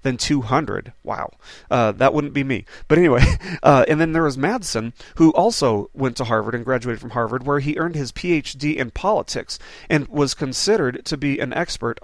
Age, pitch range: 40-59, 120-150 Hz